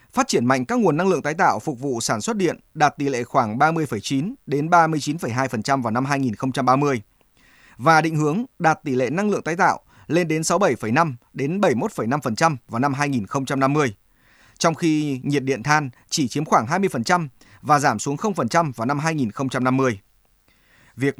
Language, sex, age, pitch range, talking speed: Vietnamese, male, 20-39, 130-170 Hz, 165 wpm